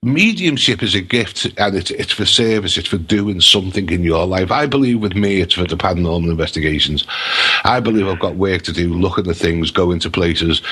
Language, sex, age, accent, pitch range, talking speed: English, male, 50-69, British, 90-125 Hz, 220 wpm